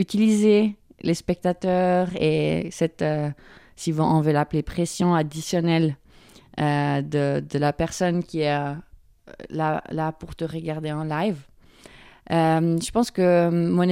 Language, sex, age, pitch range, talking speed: German, female, 30-49, 155-175 Hz, 140 wpm